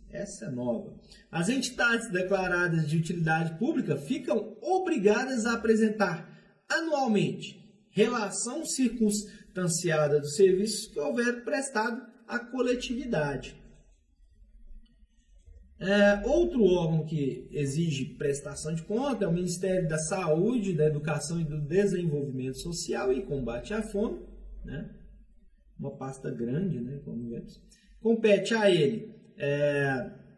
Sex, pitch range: male, 175-230 Hz